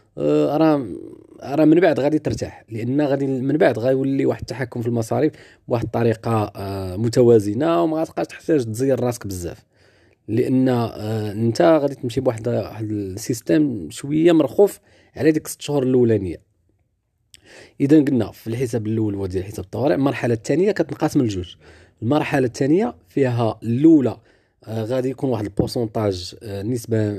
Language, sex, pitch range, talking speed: Arabic, male, 110-140 Hz, 125 wpm